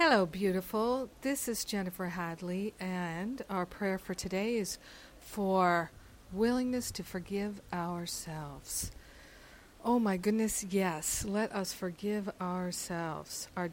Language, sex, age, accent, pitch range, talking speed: English, female, 50-69, American, 175-200 Hz, 115 wpm